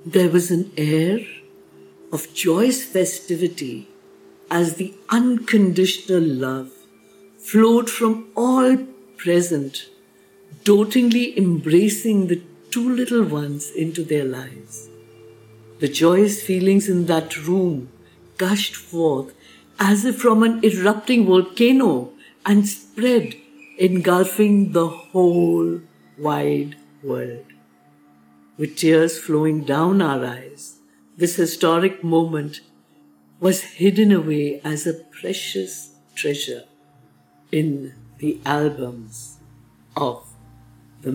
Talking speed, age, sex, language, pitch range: 95 wpm, 60-79, female, English, 125-195 Hz